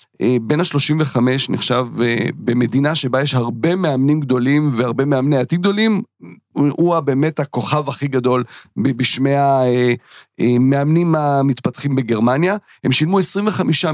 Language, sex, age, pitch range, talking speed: Hebrew, male, 40-59, 130-170 Hz, 115 wpm